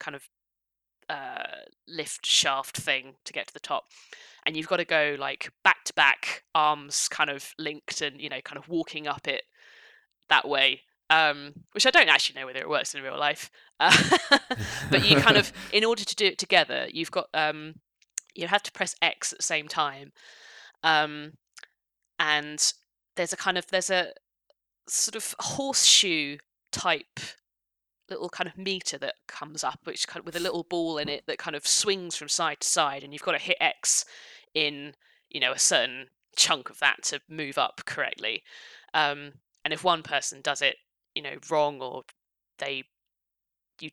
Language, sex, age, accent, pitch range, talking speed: English, female, 20-39, British, 150-200 Hz, 185 wpm